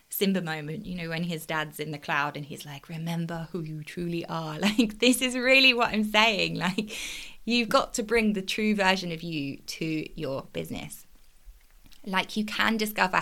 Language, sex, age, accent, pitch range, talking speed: English, female, 20-39, British, 175-220 Hz, 190 wpm